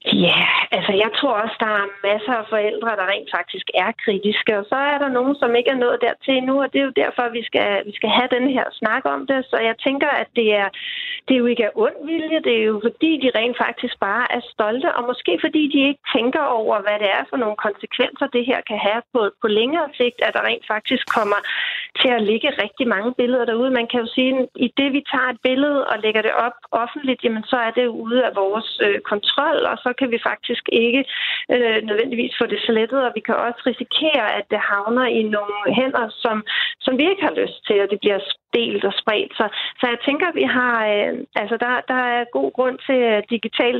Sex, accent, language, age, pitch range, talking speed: female, native, Danish, 40-59, 220-260 Hz, 235 wpm